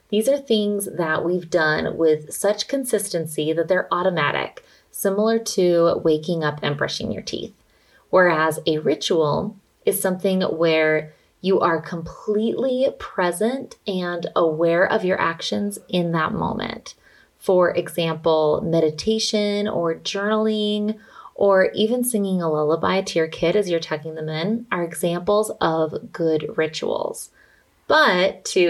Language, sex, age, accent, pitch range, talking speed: English, female, 20-39, American, 165-210 Hz, 130 wpm